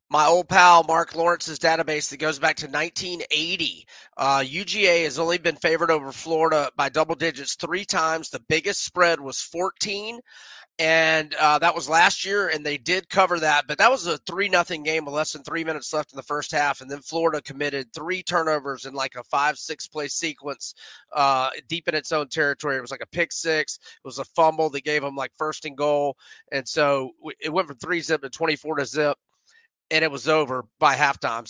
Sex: male